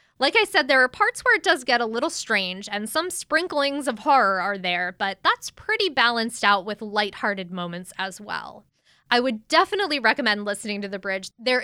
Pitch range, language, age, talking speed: 205-315 Hz, English, 20-39, 200 wpm